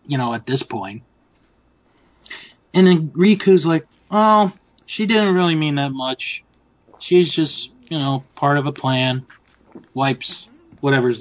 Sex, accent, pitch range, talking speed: male, American, 130-175 Hz, 140 wpm